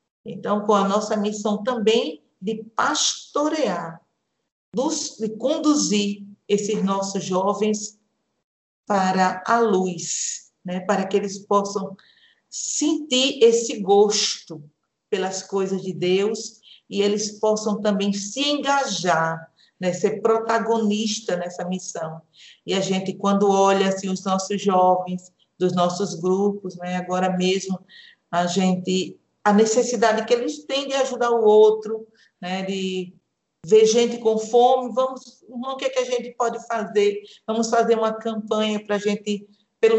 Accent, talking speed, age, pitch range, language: Brazilian, 135 wpm, 50-69, 195-230 Hz, Portuguese